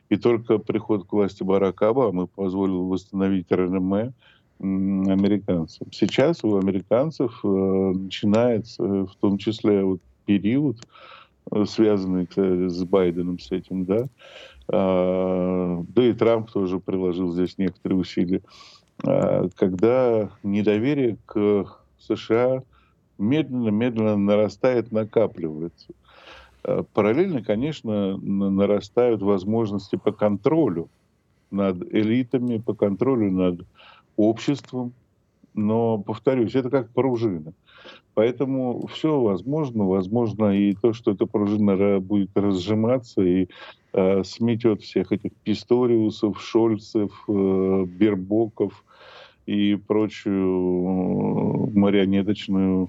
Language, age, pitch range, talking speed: Russian, 50-69, 95-115 Hz, 90 wpm